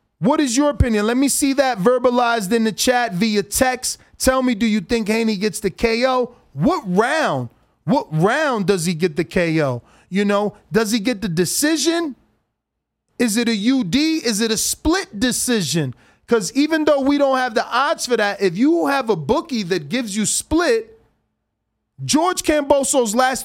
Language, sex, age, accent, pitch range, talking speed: English, male, 30-49, American, 190-255 Hz, 180 wpm